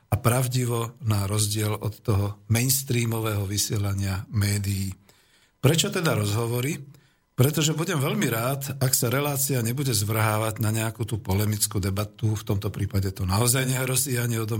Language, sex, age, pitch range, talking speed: Slovak, male, 50-69, 105-125 Hz, 135 wpm